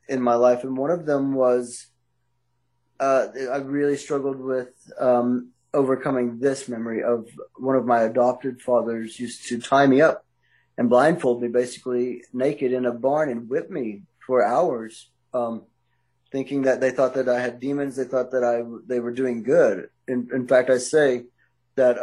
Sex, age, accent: male, 20-39, American